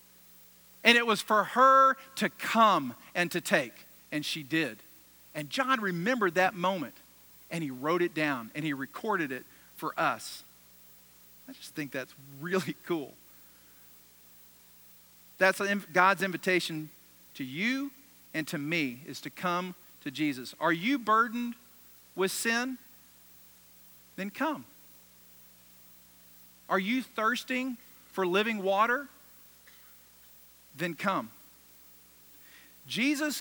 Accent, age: American, 50-69